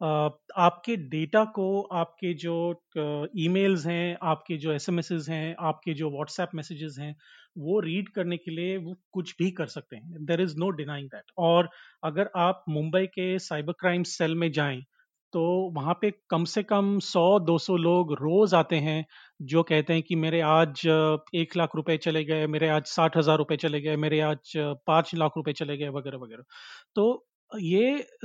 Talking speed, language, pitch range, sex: 175 wpm, Hindi, 160-190 Hz, male